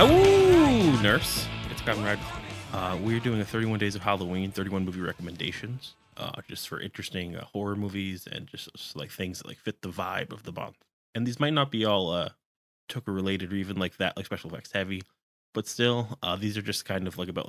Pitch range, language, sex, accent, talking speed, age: 95-115 Hz, English, male, American, 220 wpm, 20-39